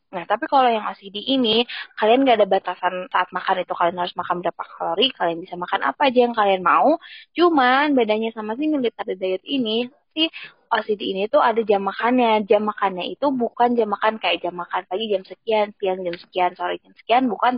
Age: 20-39